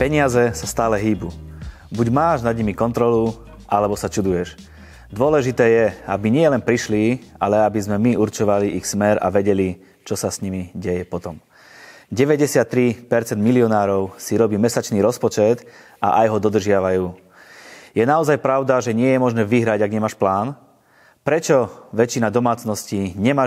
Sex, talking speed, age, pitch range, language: male, 145 wpm, 30-49, 100-120 Hz, Slovak